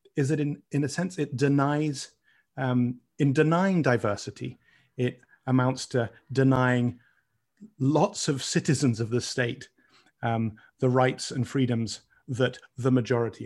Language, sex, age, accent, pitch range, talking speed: English, male, 30-49, British, 120-145 Hz, 135 wpm